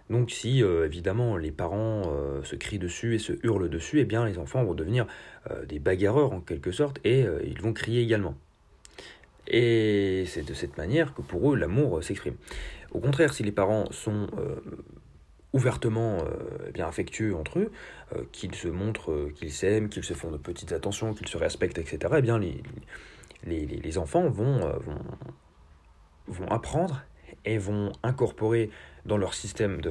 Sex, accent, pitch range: male, French, 85-120 Hz